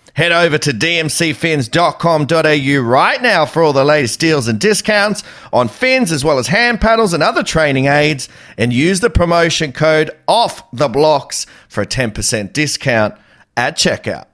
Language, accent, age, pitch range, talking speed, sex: English, Australian, 40-59, 125-170 Hz, 150 wpm, male